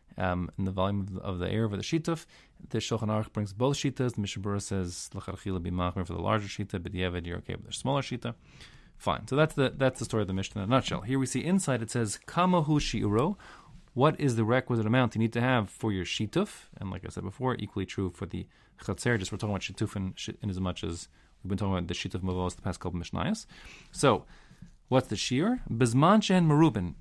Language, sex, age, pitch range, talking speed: English, male, 30-49, 100-135 Hz, 225 wpm